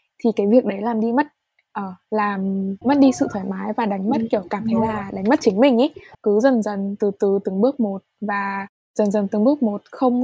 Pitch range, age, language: 200-245 Hz, 10-29, Vietnamese